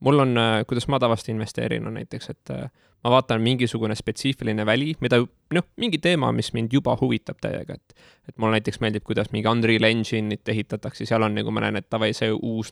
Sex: male